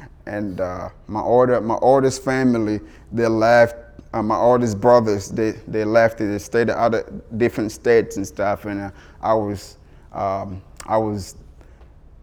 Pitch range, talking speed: 95-120 Hz, 140 wpm